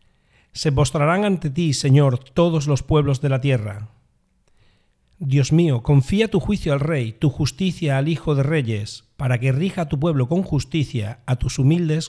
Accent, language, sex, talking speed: Spanish, Spanish, male, 175 wpm